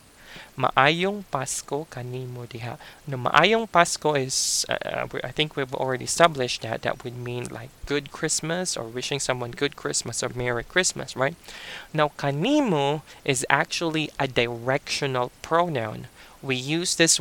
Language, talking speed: English, 140 wpm